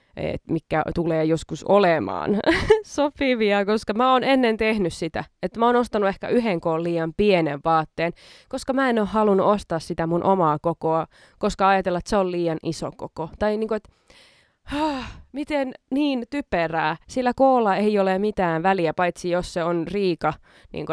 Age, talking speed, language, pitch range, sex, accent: 20-39, 170 wpm, Finnish, 165-220 Hz, female, native